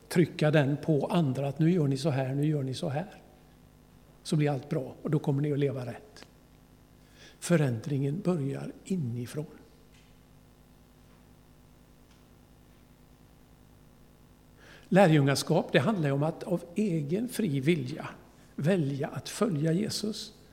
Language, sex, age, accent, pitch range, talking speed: Swedish, male, 60-79, native, 140-170 Hz, 125 wpm